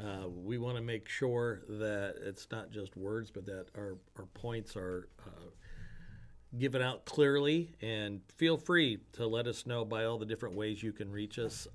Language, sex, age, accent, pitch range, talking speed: English, male, 50-69, American, 105-135 Hz, 190 wpm